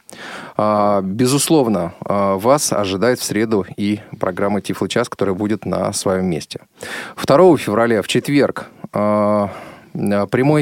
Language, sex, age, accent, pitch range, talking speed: Russian, male, 20-39, native, 100-130 Hz, 105 wpm